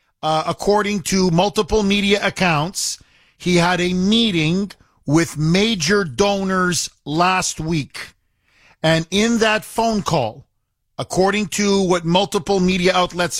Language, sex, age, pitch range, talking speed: English, male, 50-69, 150-195 Hz, 115 wpm